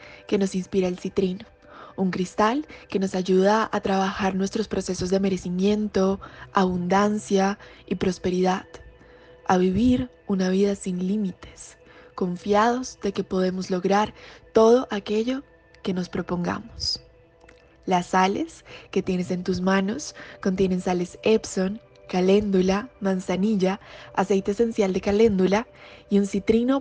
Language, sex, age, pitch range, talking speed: Spanish, female, 20-39, 185-210 Hz, 120 wpm